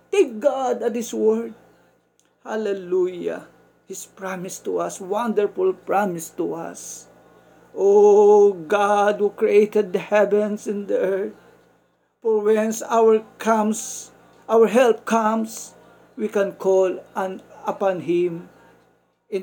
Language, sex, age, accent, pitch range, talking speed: Filipino, male, 50-69, native, 180-225 Hz, 115 wpm